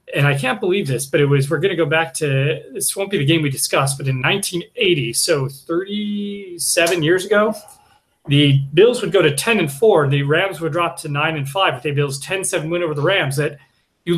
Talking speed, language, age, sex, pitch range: 230 wpm, English, 30-49, male, 140-205 Hz